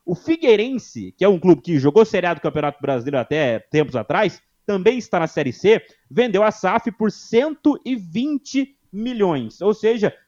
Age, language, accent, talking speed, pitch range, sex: 30-49, Portuguese, Brazilian, 160 wpm, 160-225 Hz, male